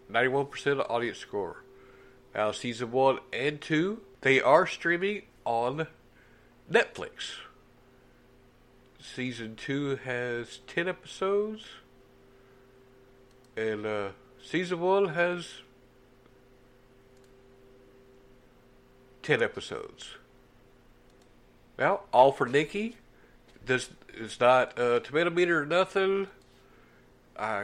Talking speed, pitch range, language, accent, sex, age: 80 wpm, 125-180 Hz, English, American, male, 60-79